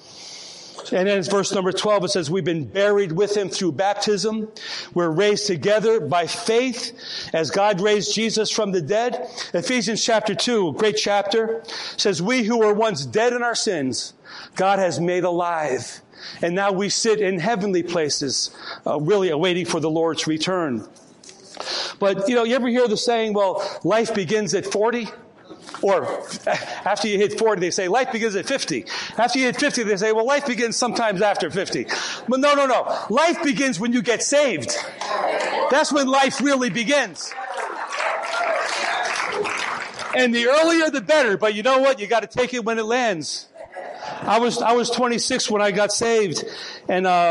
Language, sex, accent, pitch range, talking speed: English, male, American, 190-235 Hz, 175 wpm